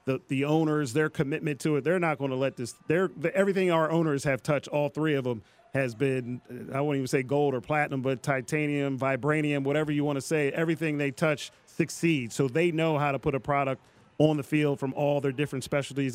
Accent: American